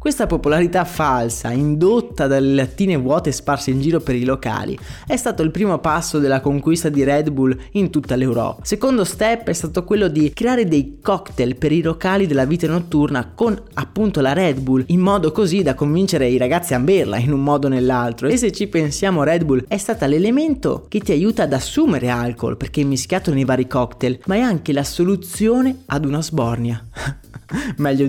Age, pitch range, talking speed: 20-39, 135-190 Hz, 190 wpm